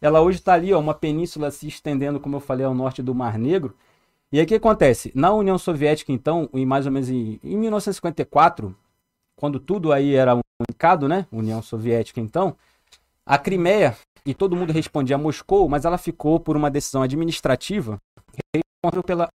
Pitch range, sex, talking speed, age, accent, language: 130-180 Hz, male, 190 wpm, 20-39, Brazilian, Portuguese